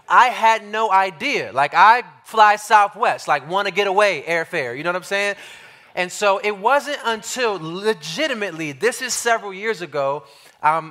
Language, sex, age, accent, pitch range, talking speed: English, male, 20-39, American, 155-210 Hz, 170 wpm